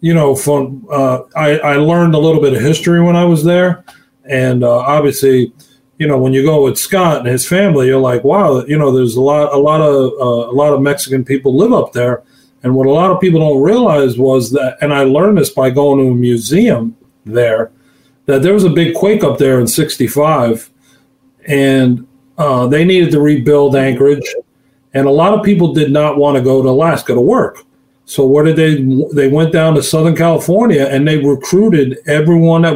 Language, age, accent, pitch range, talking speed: English, 40-59, American, 130-160 Hz, 200 wpm